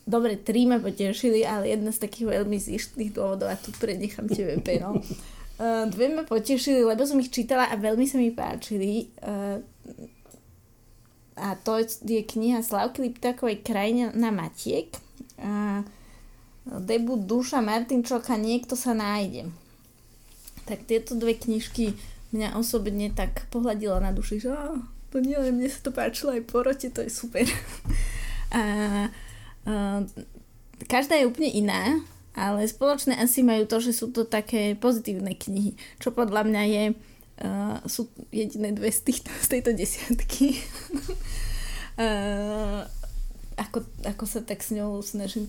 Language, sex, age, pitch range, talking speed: Slovak, female, 20-39, 205-245 Hz, 140 wpm